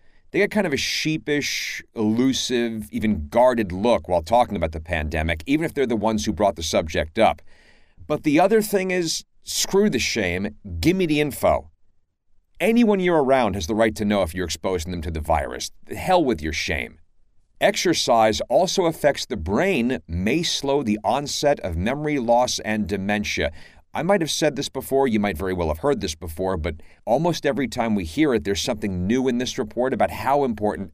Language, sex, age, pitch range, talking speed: English, male, 50-69, 85-140 Hz, 195 wpm